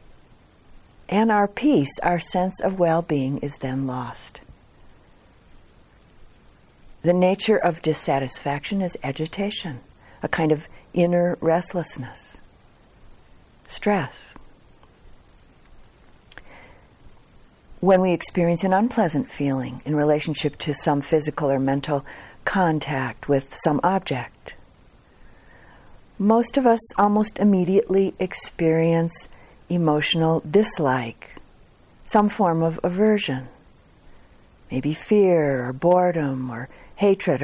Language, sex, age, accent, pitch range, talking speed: English, female, 50-69, American, 140-185 Hz, 90 wpm